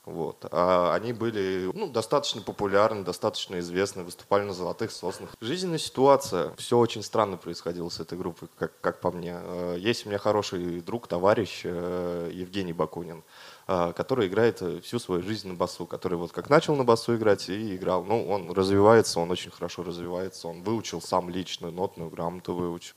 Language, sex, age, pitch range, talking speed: Russian, male, 20-39, 90-110 Hz, 165 wpm